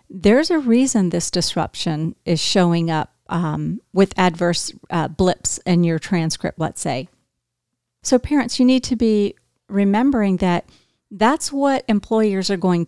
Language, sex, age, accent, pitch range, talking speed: English, female, 50-69, American, 175-220 Hz, 145 wpm